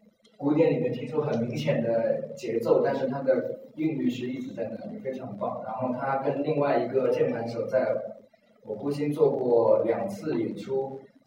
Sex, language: male, Chinese